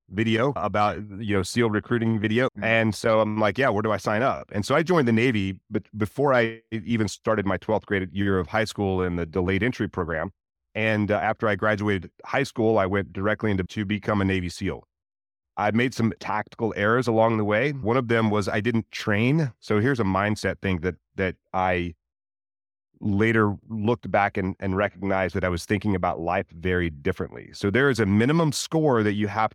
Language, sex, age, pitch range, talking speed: English, male, 30-49, 95-115 Hz, 205 wpm